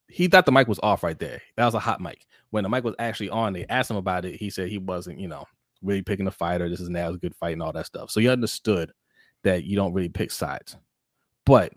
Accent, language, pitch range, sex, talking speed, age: American, English, 85-105 Hz, male, 275 wpm, 20-39